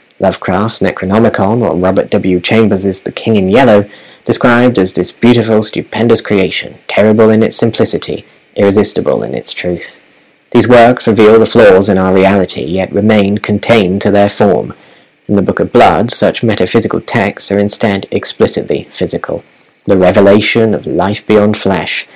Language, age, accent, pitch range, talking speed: English, 30-49, British, 95-110 Hz, 150 wpm